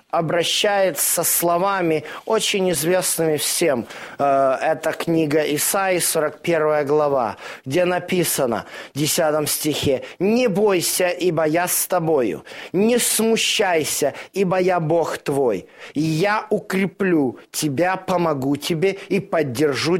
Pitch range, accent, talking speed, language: 160-225 Hz, native, 110 wpm, Russian